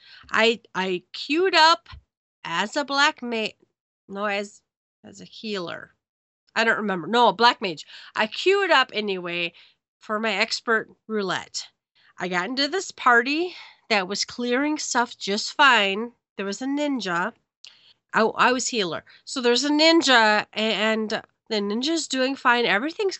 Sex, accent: female, American